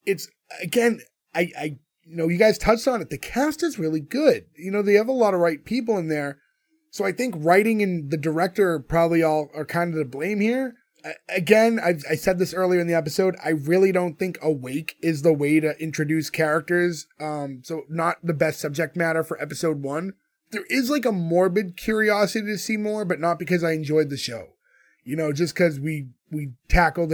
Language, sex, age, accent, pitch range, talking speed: English, male, 20-39, American, 155-190 Hz, 210 wpm